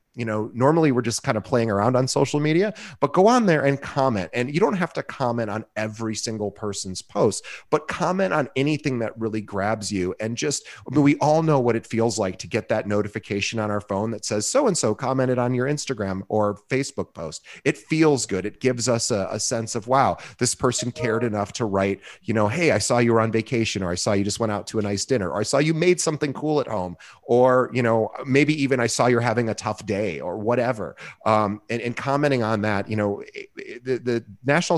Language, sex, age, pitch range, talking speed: English, male, 30-49, 105-135 Hz, 230 wpm